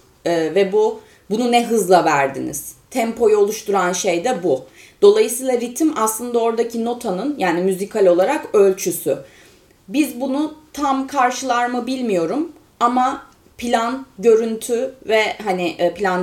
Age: 30-49